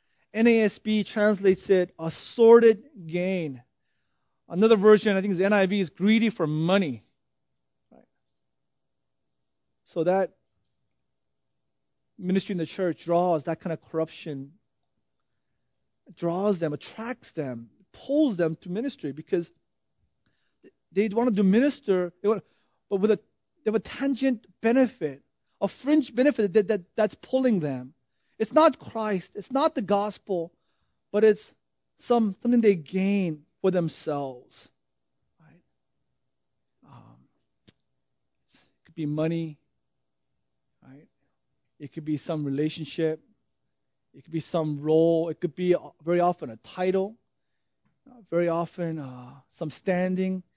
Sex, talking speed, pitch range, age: male, 125 wpm, 160-210 Hz, 30-49